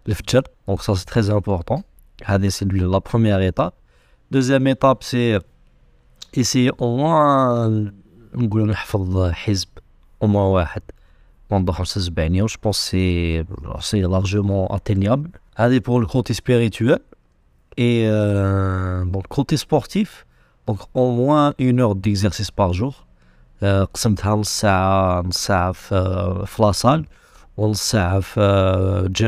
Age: 50-69